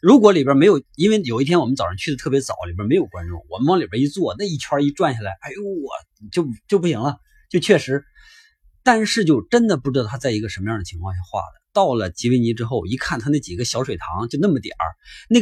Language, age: Chinese, 30-49